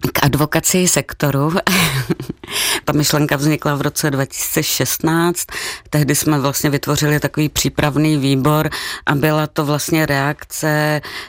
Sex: female